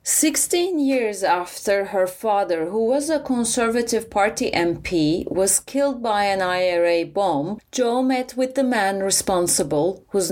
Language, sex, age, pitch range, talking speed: English, female, 30-49, 180-250 Hz, 140 wpm